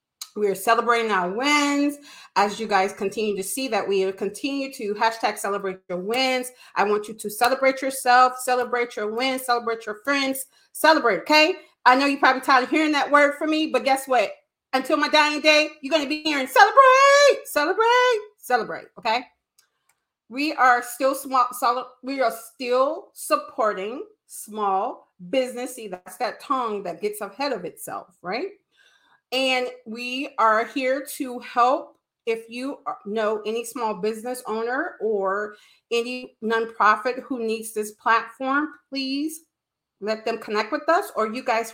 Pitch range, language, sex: 220-290 Hz, English, female